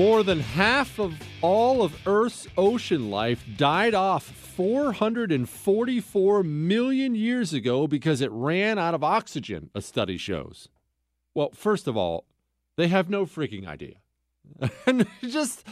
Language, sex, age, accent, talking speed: English, male, 40-59, American, 130 wpm